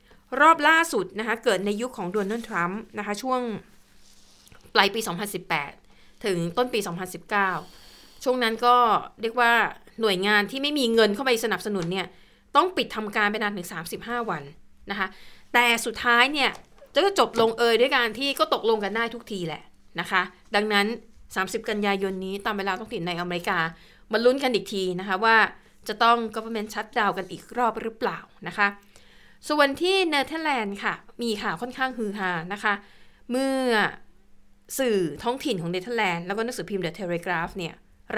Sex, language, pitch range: female, Thai, 185-235 Hz